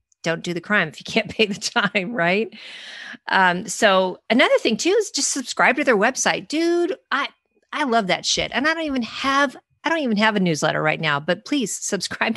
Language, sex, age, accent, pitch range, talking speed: English, female, 40-59, American, 160-215 Hz, 215 wpm